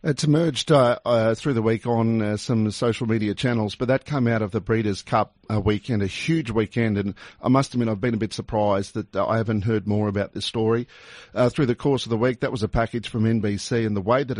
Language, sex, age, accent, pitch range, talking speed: English, male, 50-69, Australian, 105-130 Hz, 255 wpm